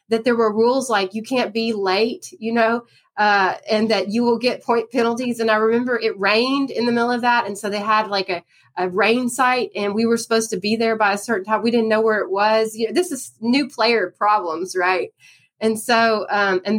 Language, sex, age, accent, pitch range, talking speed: English, female, 30-49, American, 210-250 Hz, 240 wpm